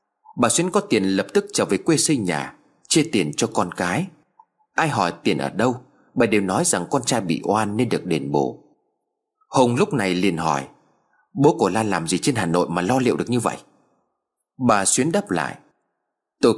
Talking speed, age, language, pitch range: 205 wpm, 30-49, Vietnamese, 100-150 Hz